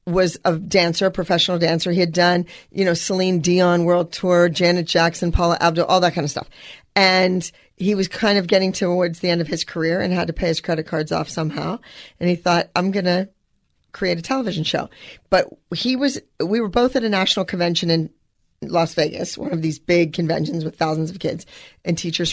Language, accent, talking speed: English, American, 210 wpm